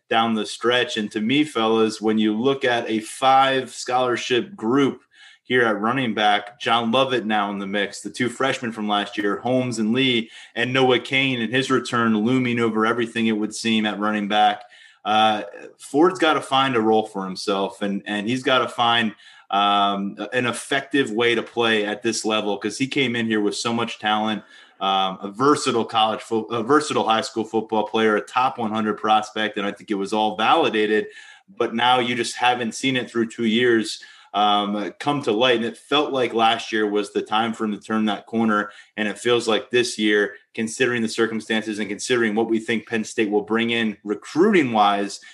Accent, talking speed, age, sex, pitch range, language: American, 200 wpm, 20-39, male, 105-120 Hz, English